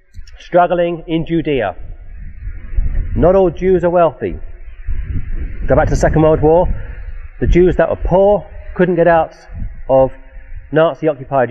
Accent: British